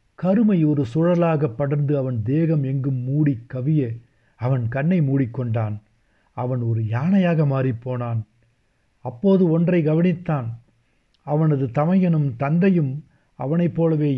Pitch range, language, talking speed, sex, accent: 125-170 Hz, Tamil, 100 wpm, male, native